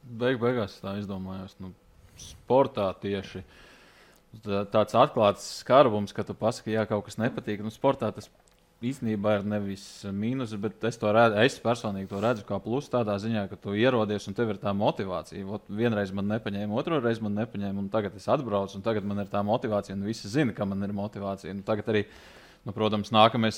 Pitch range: 100-115 Hz